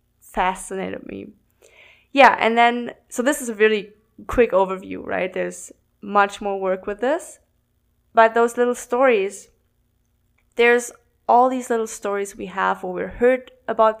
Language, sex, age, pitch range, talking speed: English, female, 20-39, 200-240 Hz, 145 wpm